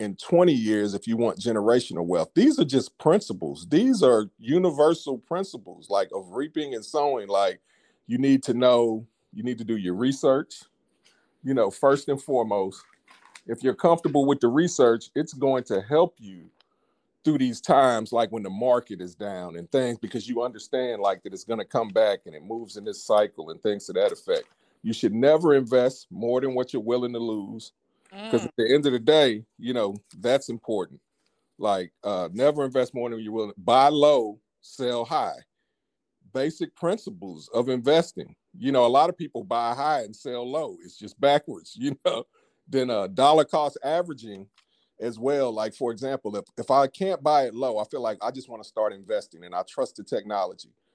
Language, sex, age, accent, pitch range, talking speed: English, male, 40-59, American, 115-155 Hz, 195 wpm